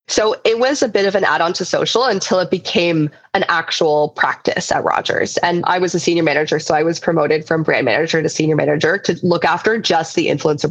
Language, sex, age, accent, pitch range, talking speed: English, female, 20-39, American, 165-190 Hz, 225 wpm